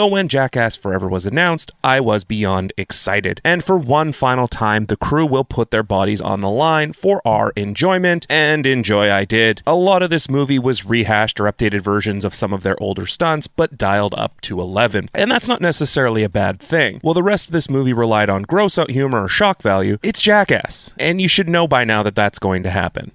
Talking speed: 220 wpm